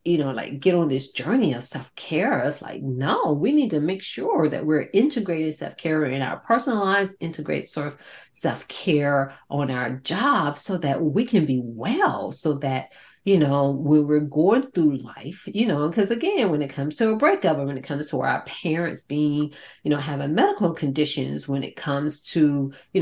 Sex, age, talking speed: female, 40-59, 195 wpm